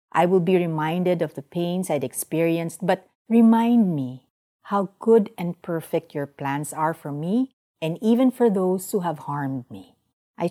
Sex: female